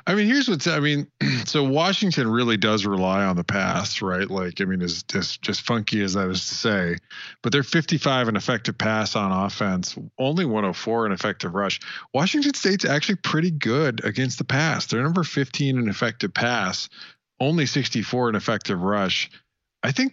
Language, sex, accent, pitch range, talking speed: English, male, American, 100-140 Hz, 190 wpm